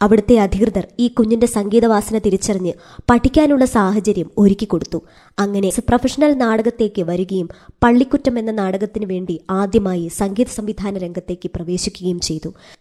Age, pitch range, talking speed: 20-39, 185-230 Hz, 110 wpm